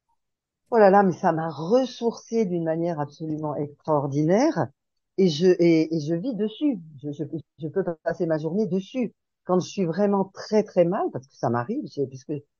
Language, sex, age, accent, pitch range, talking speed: French, female, 50-69, French, 150-210 Hz, 180 wpm